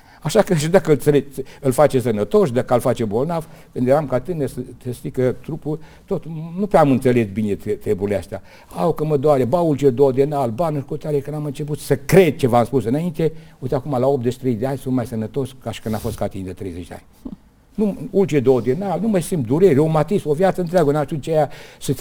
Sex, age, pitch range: male, 60-79, 125-155 Hz